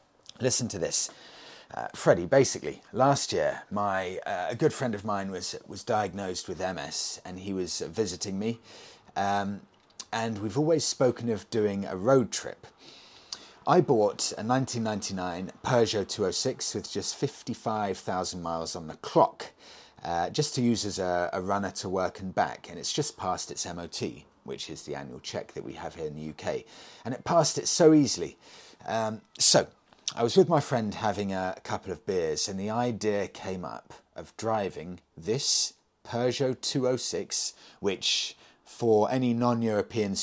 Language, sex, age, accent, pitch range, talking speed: English, male, 30-49, British, 95-120 Hz, 165 wpm